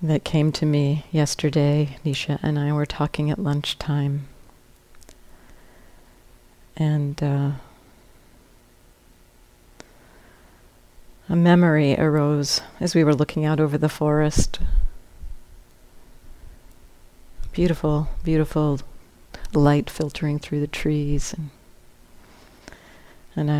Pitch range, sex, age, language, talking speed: 140-155 Hz, female, 40-59, English, 85 wpm